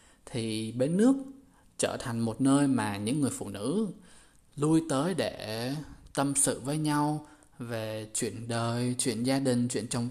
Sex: male